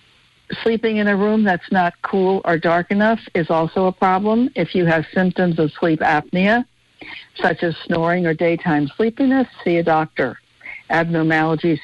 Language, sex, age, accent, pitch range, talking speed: English, female, 60-79, American, 160-190 Hz, 155 wpm